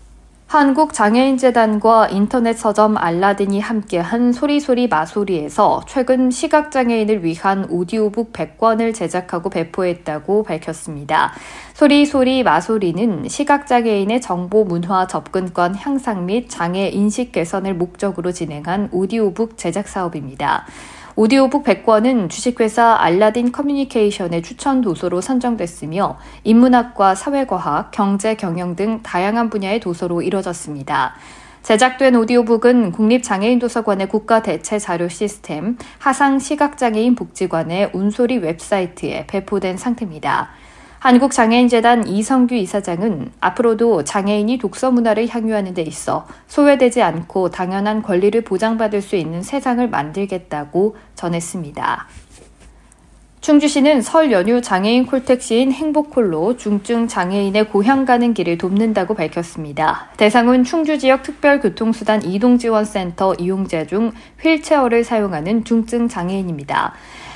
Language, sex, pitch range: Korean, female, 185-245 Hz